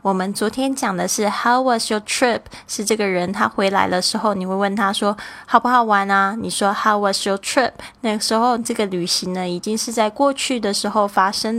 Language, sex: Chinese, female